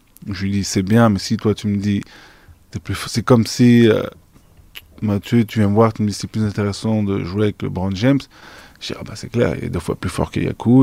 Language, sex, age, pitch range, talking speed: French, male, 20-39, 95-110 Hz, 270 wpm